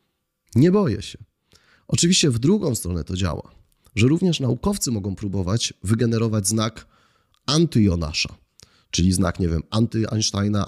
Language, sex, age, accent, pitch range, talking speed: Polish, male, 30-49, native, 100-125 Hz, 130 wpm